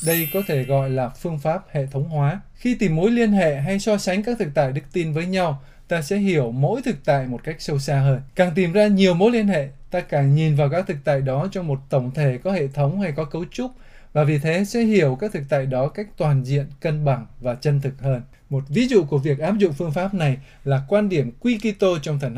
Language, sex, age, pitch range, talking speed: Vietnamese, male, 20-39, 140-190 Hz, 260 wpm